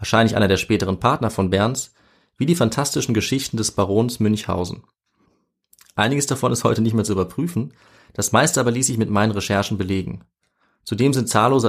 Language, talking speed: German, 175 wpm